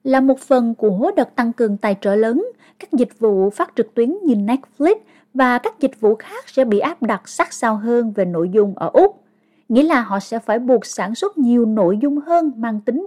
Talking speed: 225 wpm